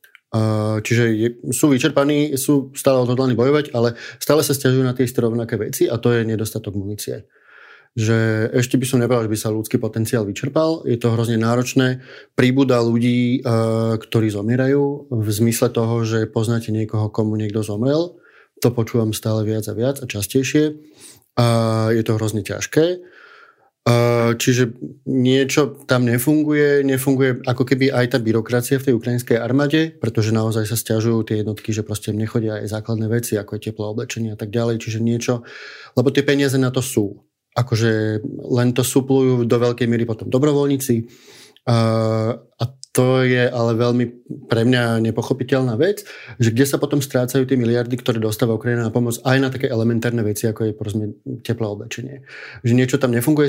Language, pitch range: Slovak, 115-130 Hz